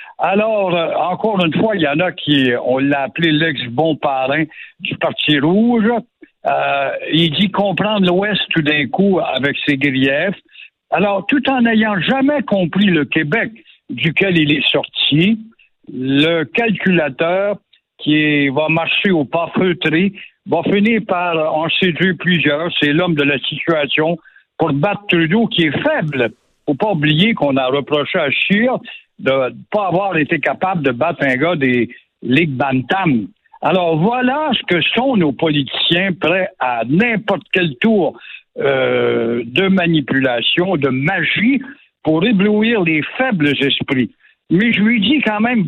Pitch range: 150-205 Hz